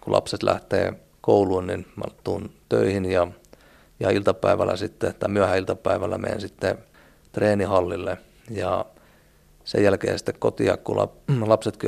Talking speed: 120 wpm